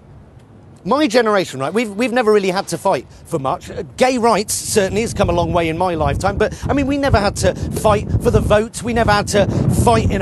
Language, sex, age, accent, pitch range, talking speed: English, male, 40-59, British, 200-265 Hz, 240 wpm